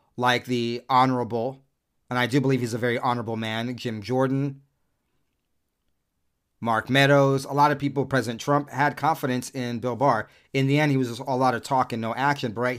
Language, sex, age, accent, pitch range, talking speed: English, male, 40-59, American, 115-145 Hz, 190 wpm